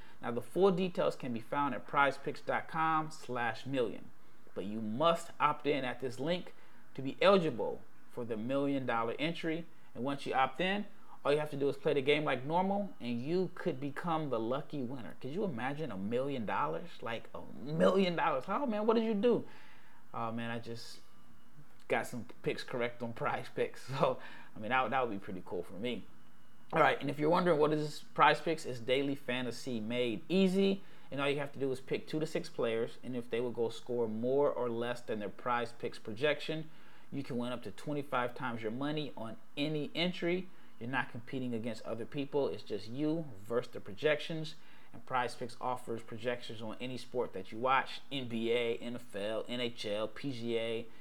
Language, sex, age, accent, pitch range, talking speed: English, male, 30-49, American, 120-165 Hz, 195 wpm